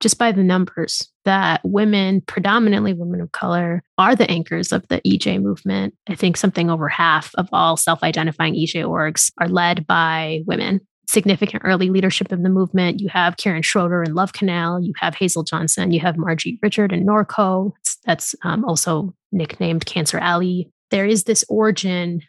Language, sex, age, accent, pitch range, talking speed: English, female, 20-39, American, 165-195 Hz, 170 wpm